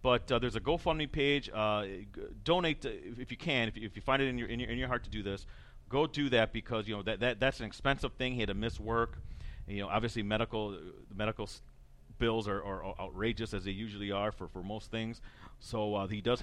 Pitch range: 100-125 Hz